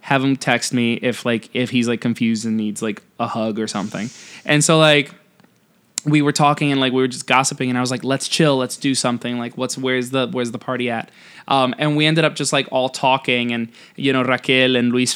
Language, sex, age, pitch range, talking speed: English, male, 20-39, 125-160 Hz, 240 wpm